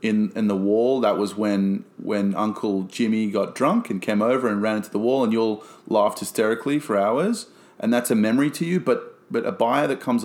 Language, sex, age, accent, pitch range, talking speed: English, male, 30-49, Australian, 105-155 Hz, 225 wpm